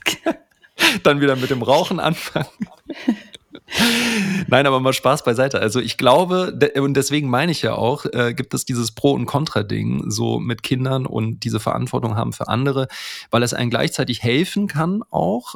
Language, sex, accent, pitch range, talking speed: German, male, German, 115-150 Hz, 165 wpm